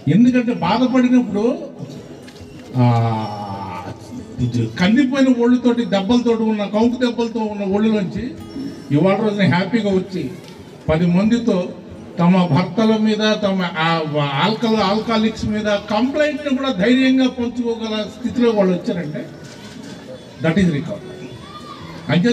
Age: 50-69